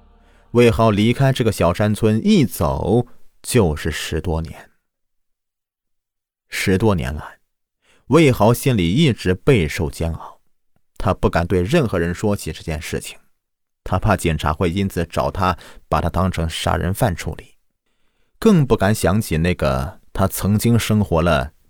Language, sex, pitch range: Chinese, male, 85-115 Hz